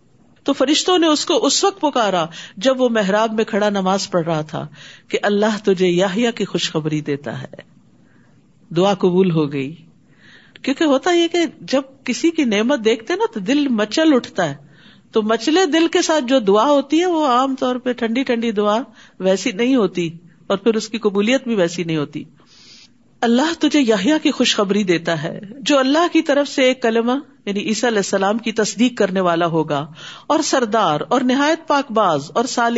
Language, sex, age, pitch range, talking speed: Urdu, female, 50-69, 195-280 Hz, 185 wpm